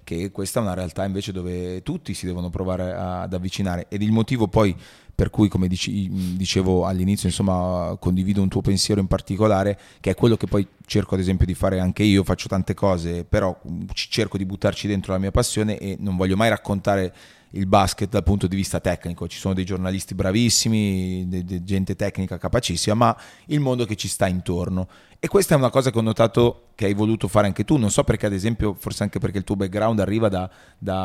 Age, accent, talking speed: 30-49, native, 205 wpm